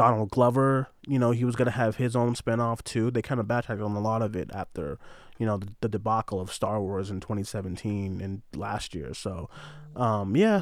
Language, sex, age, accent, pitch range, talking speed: English, male, 20-39, American, 110-140 Hz, 220 wpm